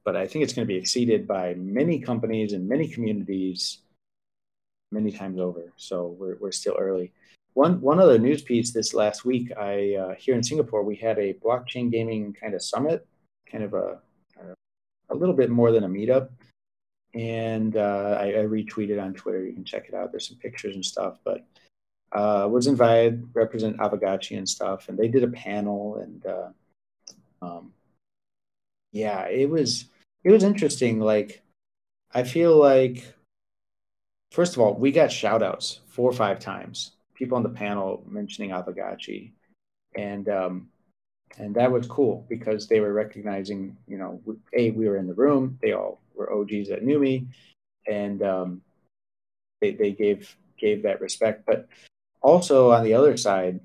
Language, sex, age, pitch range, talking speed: English, male, 30-49, 100-125 Hz, 170 wpm